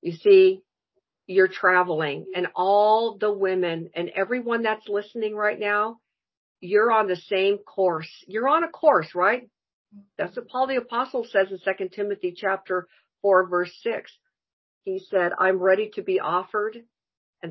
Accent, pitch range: American, 180-210 Hz